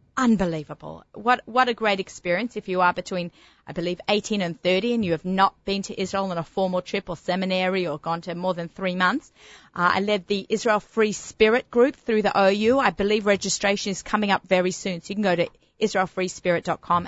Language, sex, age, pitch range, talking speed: English, female, 30-49, 180-235 Hz, 210 wpm